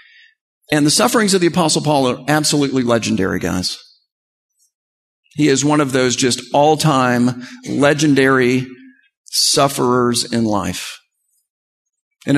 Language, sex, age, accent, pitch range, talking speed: English, male, 50-69, American, 135-210 Hz, 110 wpm